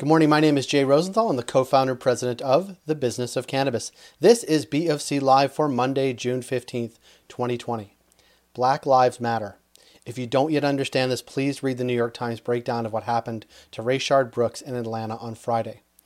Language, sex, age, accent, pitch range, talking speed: English, male, 30-49, American, 120-140 Hz, 195 wpm